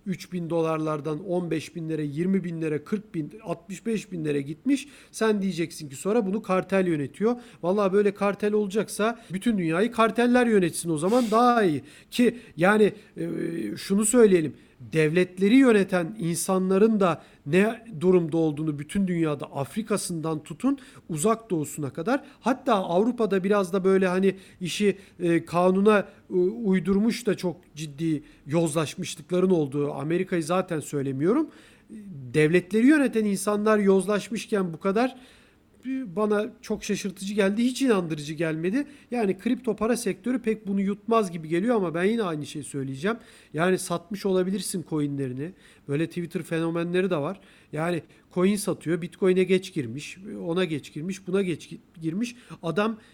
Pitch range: 165-210 Hz